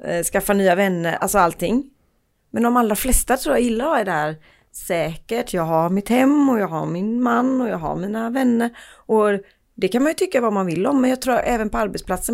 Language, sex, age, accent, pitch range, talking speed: Swedish, female, 30-49, native, 175-240 Hz, 225 wpm